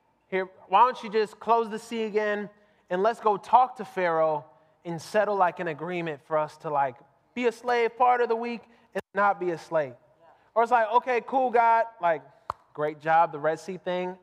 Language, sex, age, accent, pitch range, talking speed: English, male, 20-39, American, 175-225 Hz, 205 wpm